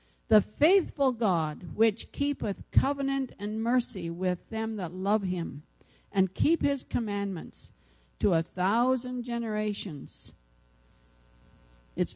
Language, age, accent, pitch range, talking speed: English, 60-79, American, 165-235 Hz, 110 wpm